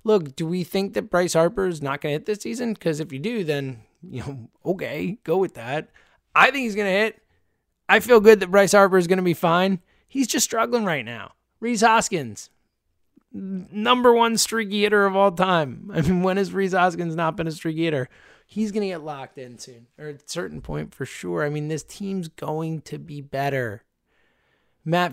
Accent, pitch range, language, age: American, 145-195 Hz, English, 20-39